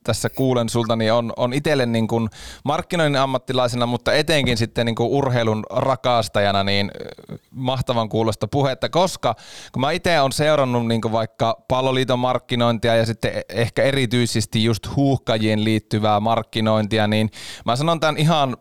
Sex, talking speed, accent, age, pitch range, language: male, 150 wpm, native, 30-49, 110-130 Hz, Finnish